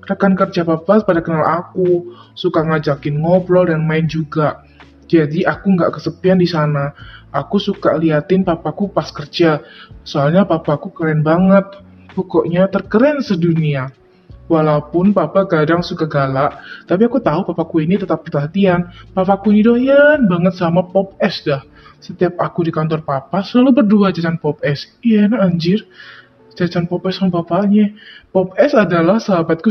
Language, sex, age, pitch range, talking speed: Indonesian, male, 20-39, 155-200 Hz, 145 wpm